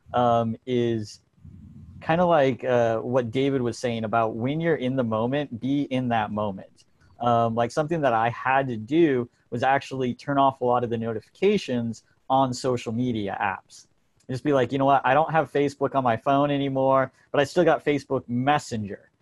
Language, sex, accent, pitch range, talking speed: English, male, American, 120-145 Hz, 185 wpm